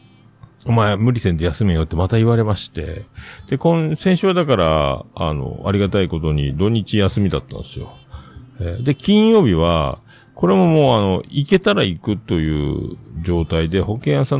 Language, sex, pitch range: Japanese, male, 80-130 Hz